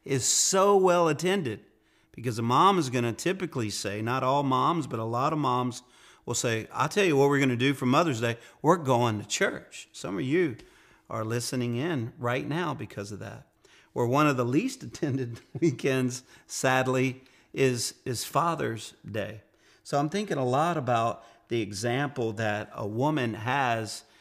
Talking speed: 175 wpm